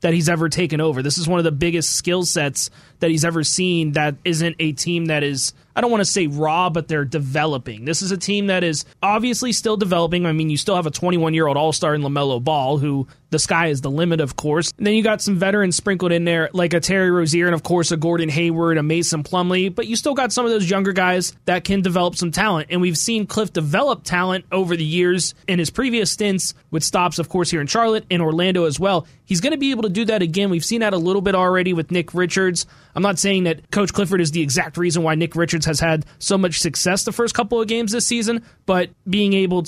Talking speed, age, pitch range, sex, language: 255 wpm, 20-39, 160-190 Hz, male, English